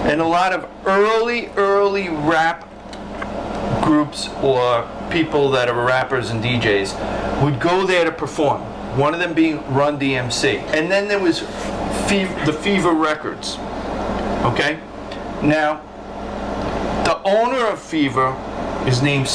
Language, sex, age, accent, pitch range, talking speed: English, male, 40-59, American, 135-175 Hz, 125 wpm